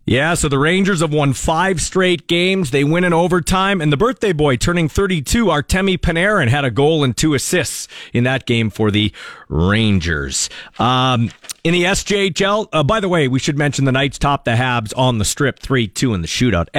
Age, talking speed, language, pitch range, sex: 40-59, 200 wpm, English, 130-190 Hz, male